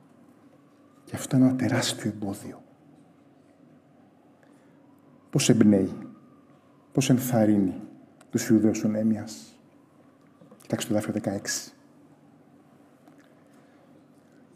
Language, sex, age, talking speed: Greek, male, 30-49, 75 wpm